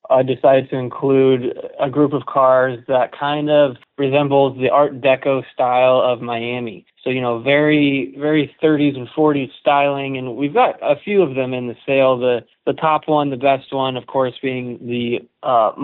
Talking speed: 185 wpm